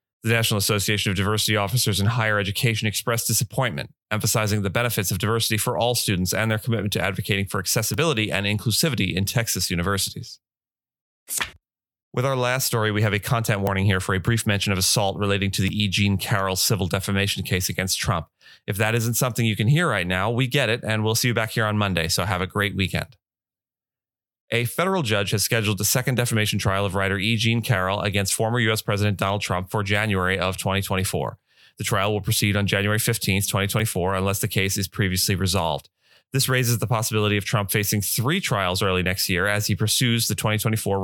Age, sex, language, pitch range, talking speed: 30-49, male, English, 100-115 Hz, 200 wpm